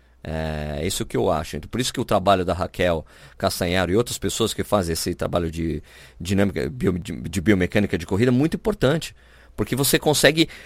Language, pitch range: Portuguese, 90-135 Hz